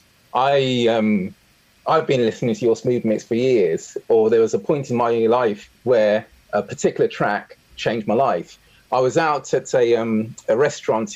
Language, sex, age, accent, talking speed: English, male, 30-49, British, 185 wpm